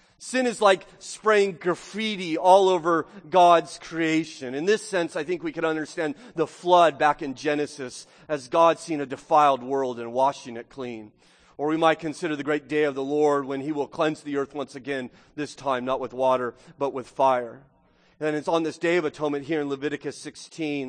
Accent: American